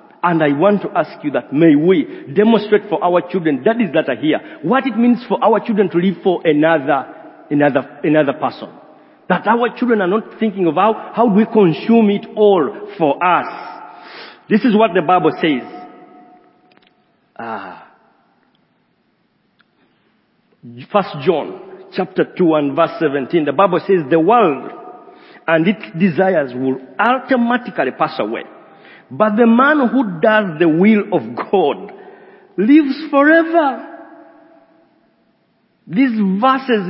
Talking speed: 140 wpm